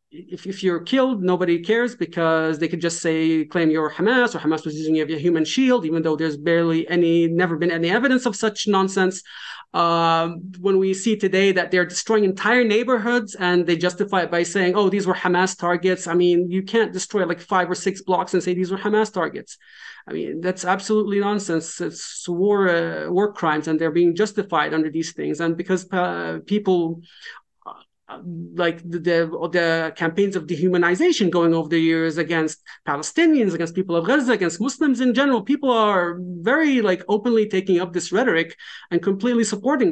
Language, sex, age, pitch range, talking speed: English, male, 40-59, 165-205 Hz, 190 wpm